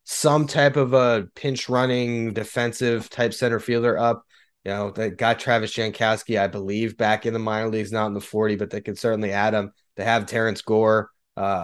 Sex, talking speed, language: male, 200 wpm, English